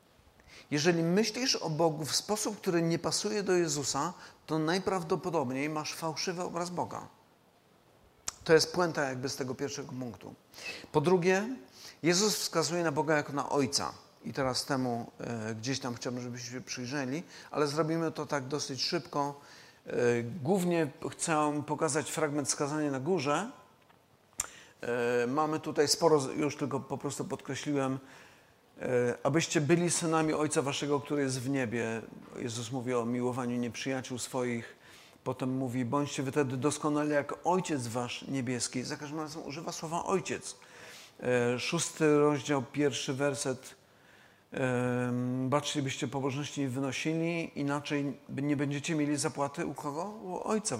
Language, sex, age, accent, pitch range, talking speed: Polish, male, 40-59, native, 130-160 Hz, 130 wpm